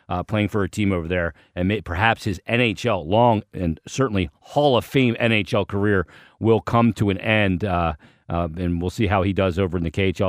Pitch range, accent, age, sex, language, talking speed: 95-110 Hz, American, 40-59, male, English, 210 wpm